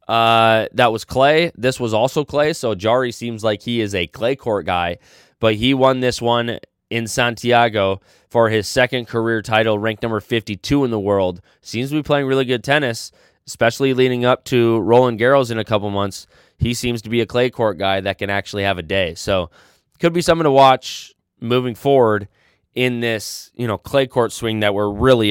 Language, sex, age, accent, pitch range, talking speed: English, male, 20-39, American, 110-135 Hz, 200 wpm